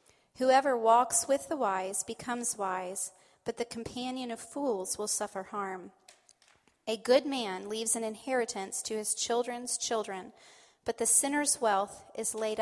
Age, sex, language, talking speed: 30-49, female, English, 145 wpm